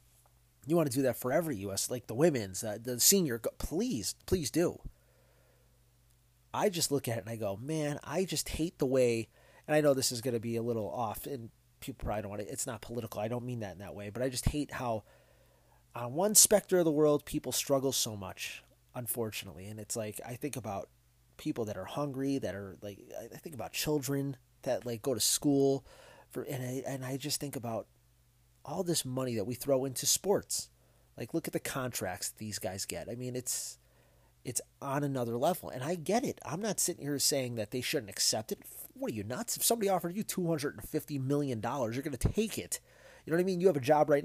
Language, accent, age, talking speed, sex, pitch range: English, American, 30-49, 225 wpm, male, 115-150 Hz